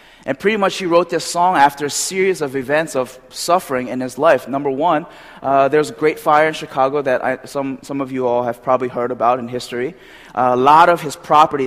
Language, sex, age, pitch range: Korean, male, 20-39, 120-140 Hz